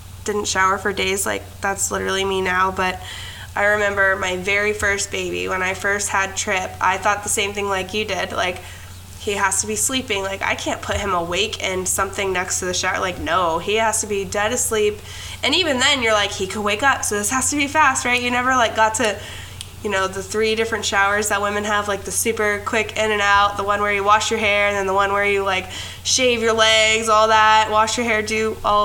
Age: 10-29